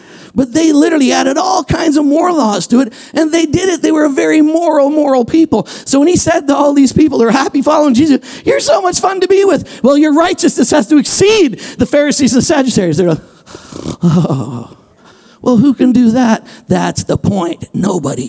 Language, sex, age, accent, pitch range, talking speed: English, male, 50-69, American, 180-275 Hz, 210 wpm